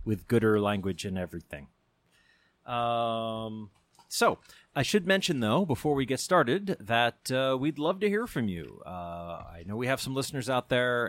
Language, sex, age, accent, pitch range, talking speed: English, male, 40-59, American, 95-135 Hz, 175 wpm